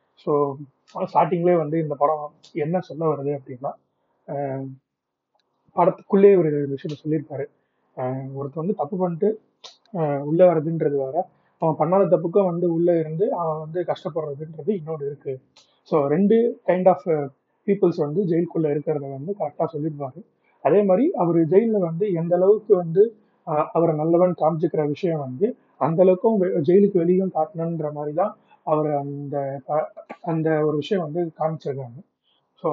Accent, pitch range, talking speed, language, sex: native, 150-185 Hz, 125 wpm, Tamil, male